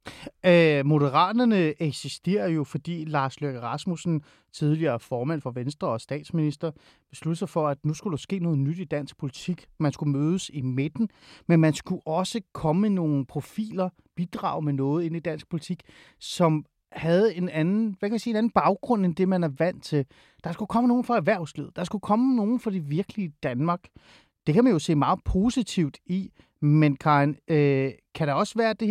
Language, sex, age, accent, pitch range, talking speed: Danish, male, 30-49, native, 145-185 Hz, 190 wpm